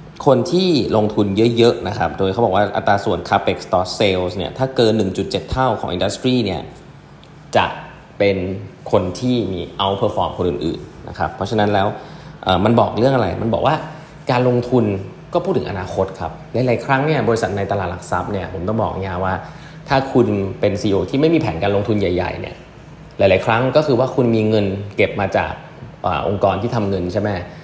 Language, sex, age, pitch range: English, male, 20-39, 100-130 Hz